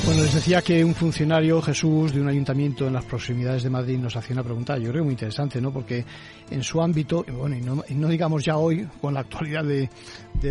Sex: male